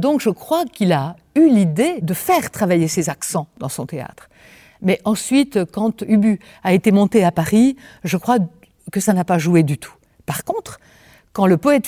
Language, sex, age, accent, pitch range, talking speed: French, female, 60-79, French, 160-225 Hz, 190 wpm